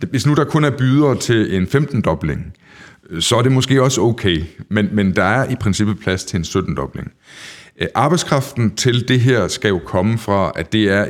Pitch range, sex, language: 90-120 Hz, male, Danish